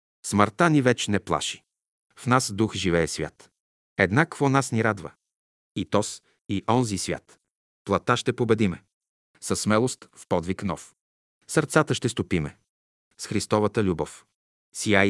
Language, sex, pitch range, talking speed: Bulgarian, male, 90-125 Hz, 135 wpm